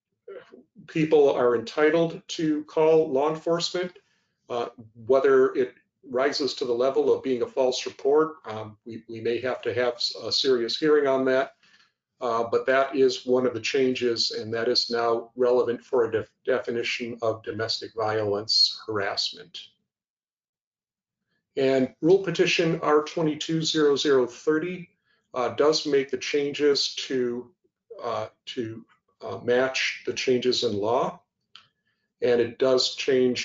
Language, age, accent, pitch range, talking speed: English, 50-69, American, 120-170 Hz, 135 wpm